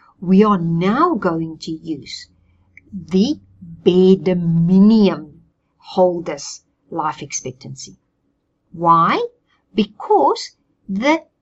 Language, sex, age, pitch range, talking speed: English, female, 50-69, 170-235 Hz, 80 wpm